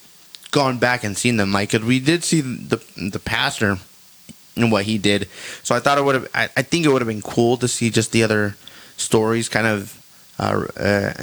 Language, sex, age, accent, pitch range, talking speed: English, male, 20-39, American, 105-120 Hz, 215 wpm